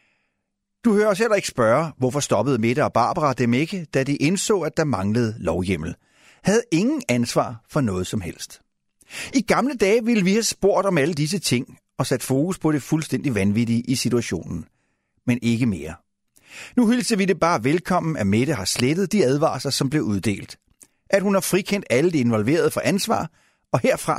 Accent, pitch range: native, 125-195 Hz